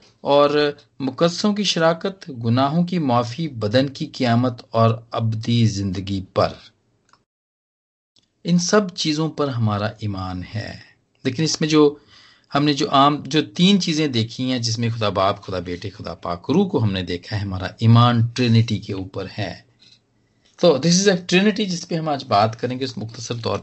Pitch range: 110-155 Hz